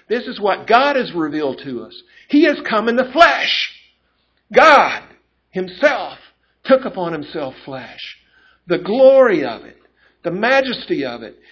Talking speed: 145 wpm